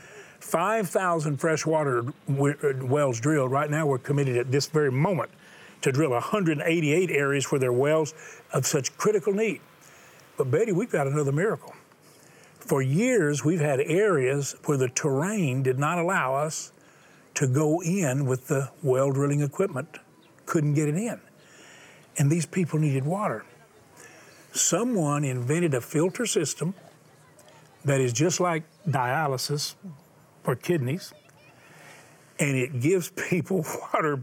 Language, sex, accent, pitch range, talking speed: English, male, American, 135-165 Hz, 130 wpm